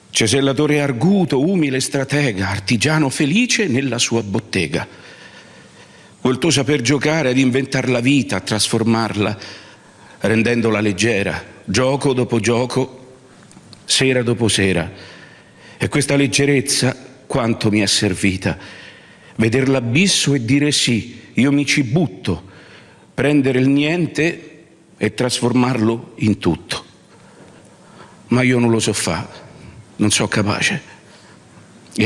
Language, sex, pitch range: Italian, male, 105-135 Hz